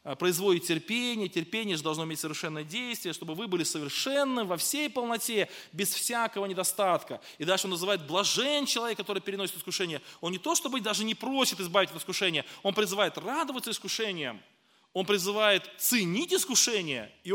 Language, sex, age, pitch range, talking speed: Russian, male, 20-39, 175-230 Hz, 160 wpm